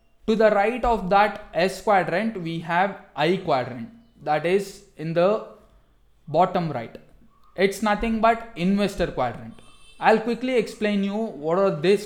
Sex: male